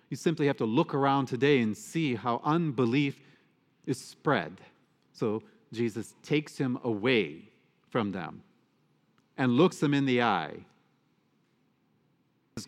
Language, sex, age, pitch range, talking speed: English, male, 40-59, 120-150 Hz, 130 wpm